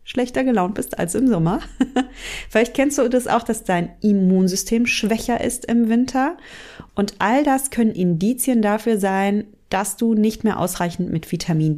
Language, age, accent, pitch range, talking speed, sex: German, 30-49, German, 175-230 Hz, 165 wpm, female